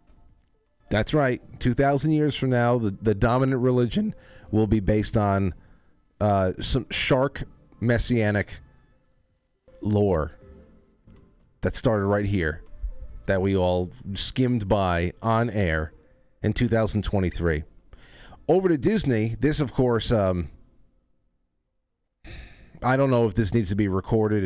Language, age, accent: English, 30-49, American